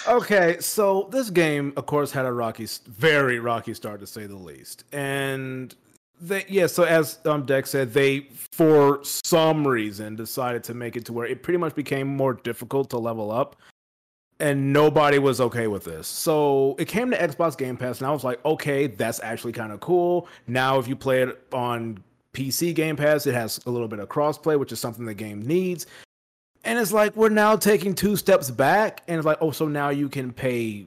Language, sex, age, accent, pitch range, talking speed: English, male, 30-49, American, 120-165 Hz, 205 wpm